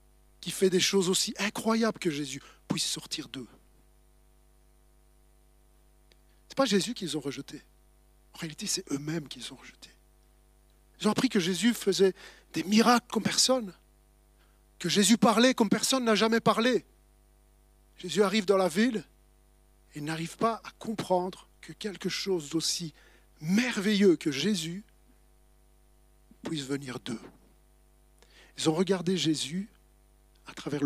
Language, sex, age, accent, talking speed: French, male, 50-69, French, 135 wpm